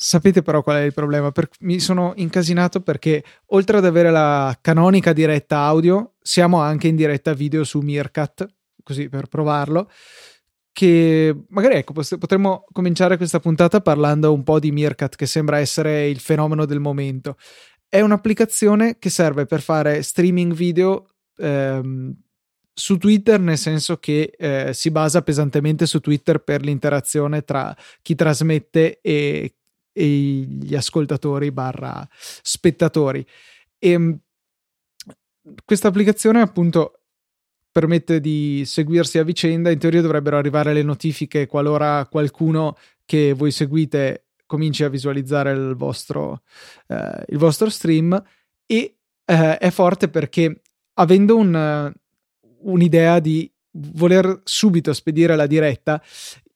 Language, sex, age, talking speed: Italian, male, 20-39, 125 wpm